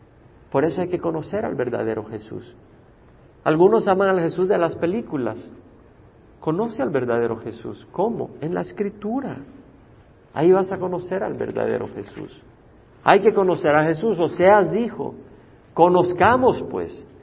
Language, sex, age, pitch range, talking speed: Spanish, male, 50-69, 130-185 Hz, 140 wpm